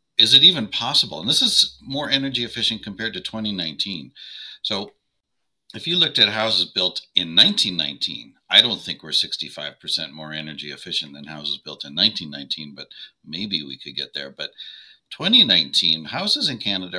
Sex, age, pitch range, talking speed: male, 50-69, 80-110 Hz, 165 wpm